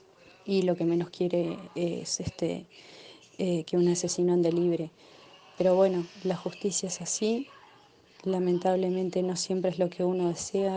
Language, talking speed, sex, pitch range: Spanish, 150 wpm, female, 175-190 Hz